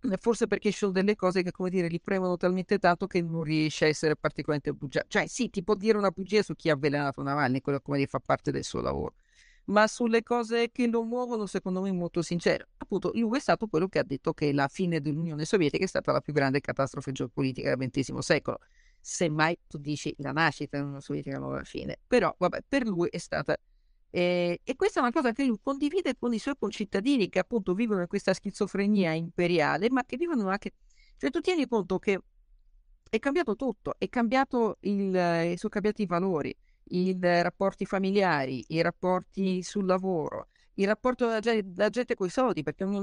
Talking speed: 205 wpm